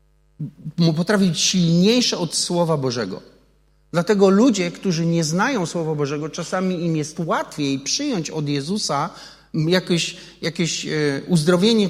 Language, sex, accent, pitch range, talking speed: Polish, male, native, 155-185 Hz, 110 wpm